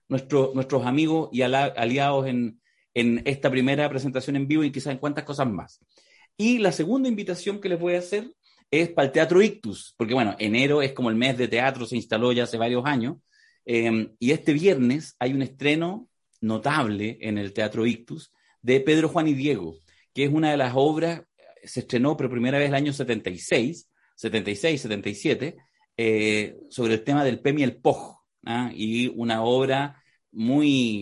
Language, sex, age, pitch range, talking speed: Spanish, male, 30-49, 115-145 Hz, 180 wpm